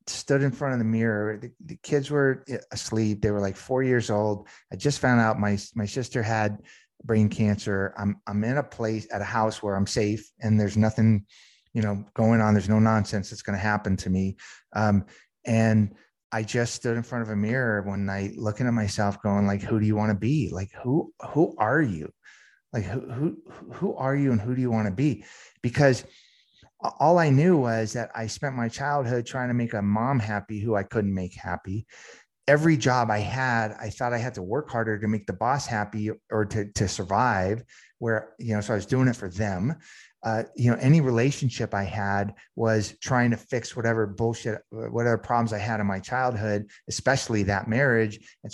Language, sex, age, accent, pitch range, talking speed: English, male, 30-49, American, 105-125 Hz, 210 wpm